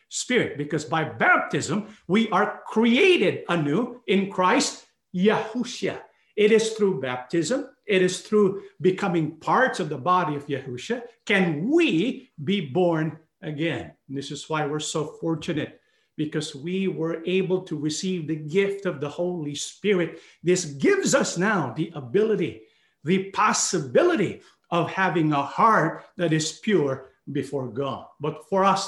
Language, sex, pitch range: English, male, 160-205 Hz